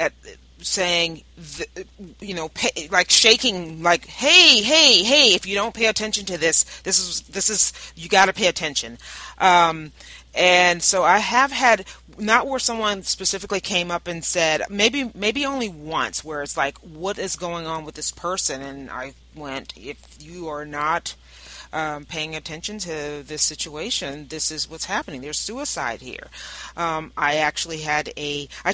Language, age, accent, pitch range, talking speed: English, 30-49, American, 150-195 Hz, 165 wpm